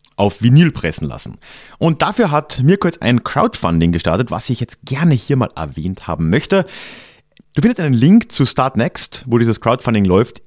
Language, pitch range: German, 85-135 Hz